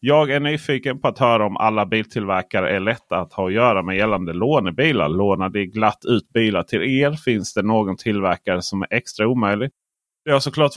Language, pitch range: Swedish, 100-125 Hz